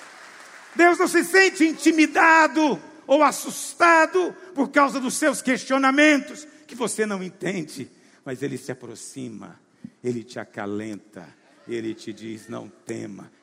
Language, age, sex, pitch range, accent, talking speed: Portuguese, 60-79, male, 190-275 Hz, Brazilian, 125 wpm